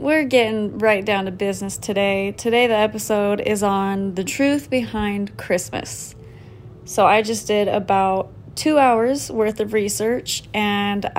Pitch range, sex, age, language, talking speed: 195-240 Hz, female, 20-39, English, 145 wpm